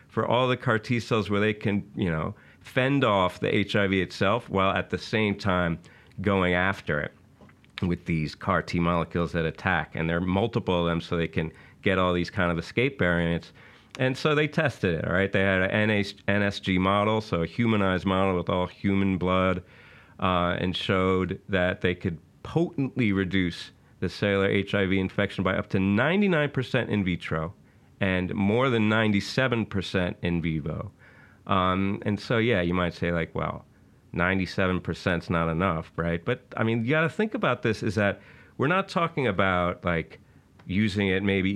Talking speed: 175 wpm